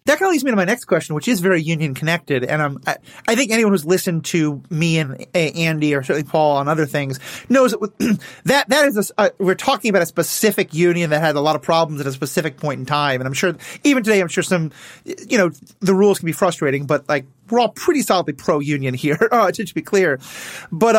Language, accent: English, American